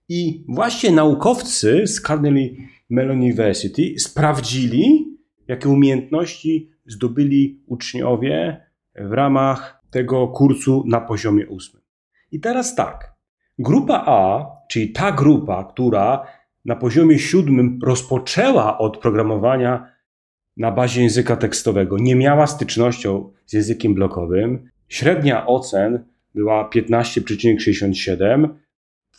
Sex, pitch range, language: male, 105-135 Hz, Polish